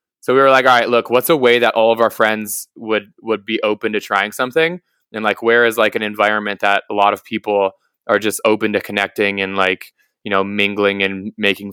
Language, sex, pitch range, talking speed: English, male, 105-125 Hz, 235 wpm